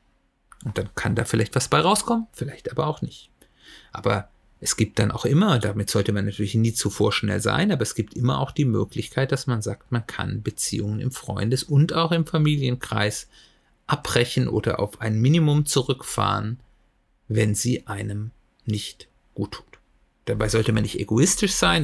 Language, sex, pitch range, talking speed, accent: German, male, 105-125 Hz, 175 wpm, German